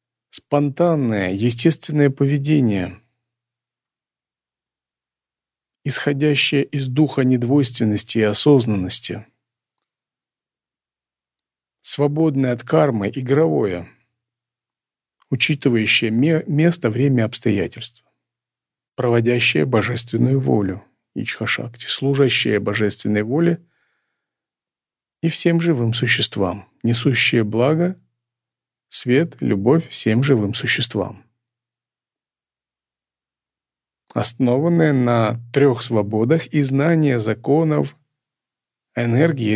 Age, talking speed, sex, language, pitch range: 40-59, 65 wpm, male, Russian, 115-140 Hz